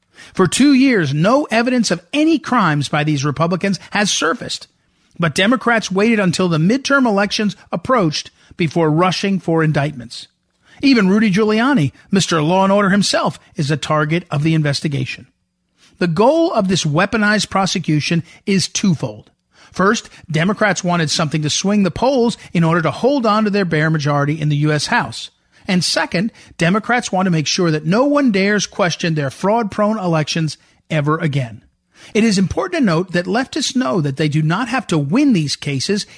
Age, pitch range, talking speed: 40-59, 155-215 Hz, 170 wpm